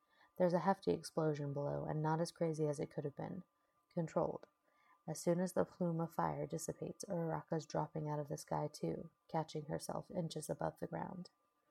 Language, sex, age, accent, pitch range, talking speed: English, female, 30-49, American, 150-170 Hz, 185 wpm